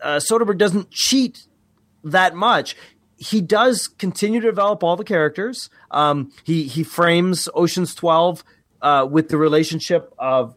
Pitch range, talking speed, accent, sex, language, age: 135-175 Hz, 140 wpm, American, male, English, 30-49